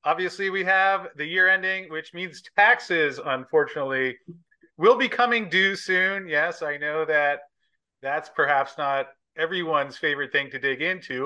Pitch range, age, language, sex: 130-180 Hz, 30-49, English, male